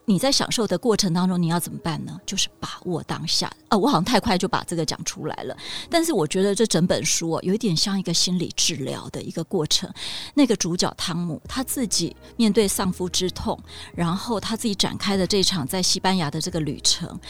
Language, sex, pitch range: Chinese, female, 170-230 Hz